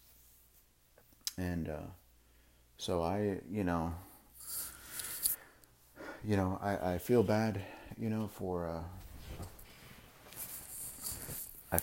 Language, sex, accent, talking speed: English, male, American, 80 wpm